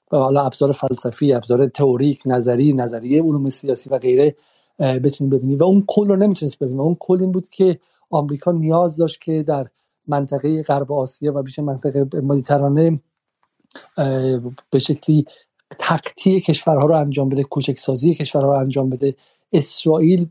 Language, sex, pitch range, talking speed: Persian, male, 140-160 Hz, 150 wpm